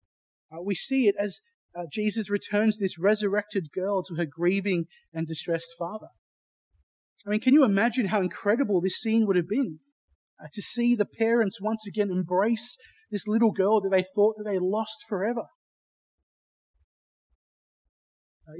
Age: 30-49